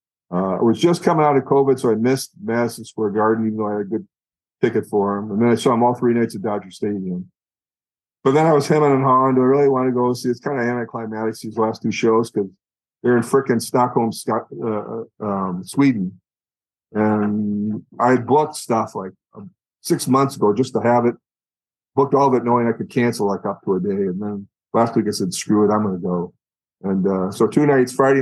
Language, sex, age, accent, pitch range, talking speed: English, male, 50-69, American, 105-130 Hz, 230 wpm